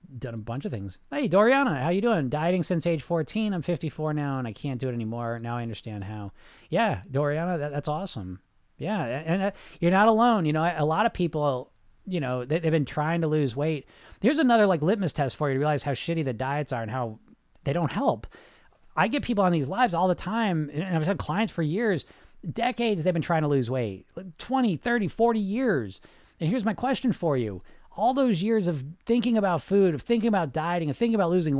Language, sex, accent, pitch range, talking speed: English, male, American, 140-200 Hz, 220 wpm